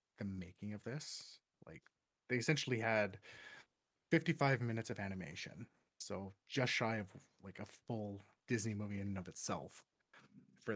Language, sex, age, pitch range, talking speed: English, male, 30-49, 100-120 Hz, 145 wpm